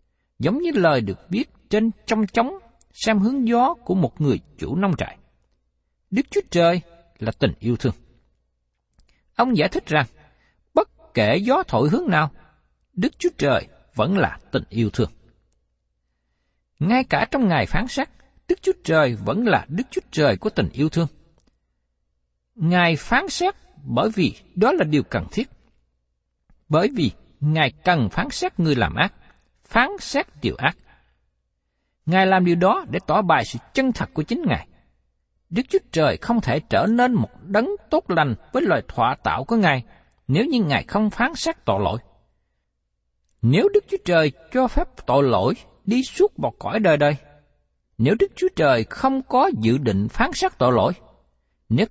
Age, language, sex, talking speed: 60-79, Vietnamese, male, 170 wpm